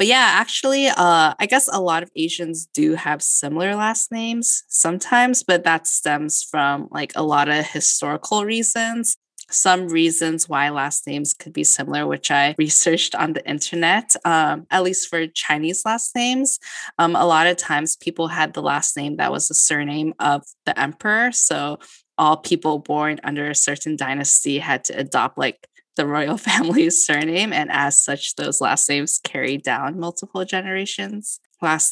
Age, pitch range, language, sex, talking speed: 20-39, 145-185 Hz, English, female, 170 wpm